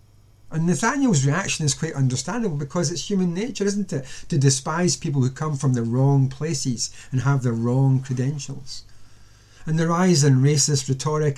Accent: British